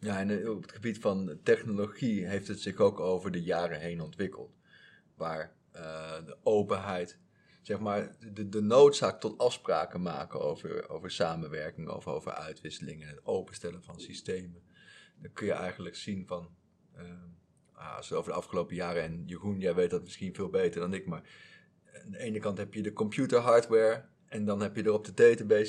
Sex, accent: male, Dutch